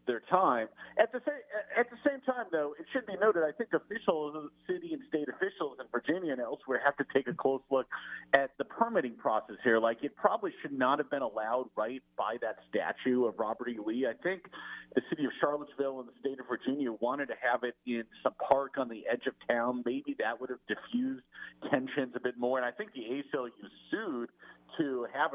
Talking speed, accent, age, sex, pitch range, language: 220 wpm, American, 50-69, male, 120-160 Hz, English